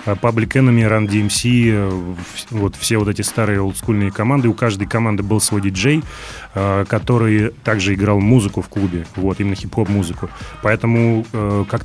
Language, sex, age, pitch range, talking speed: Russian, male, 30-49, 100-115 Hz, 145 wpm